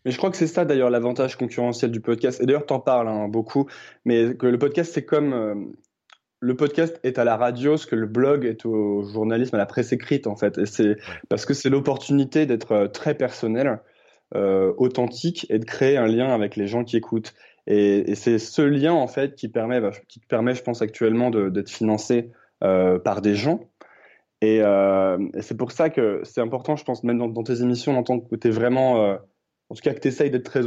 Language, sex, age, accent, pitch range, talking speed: French, male, 20-39, French, 110-135 Hz, 230 wpm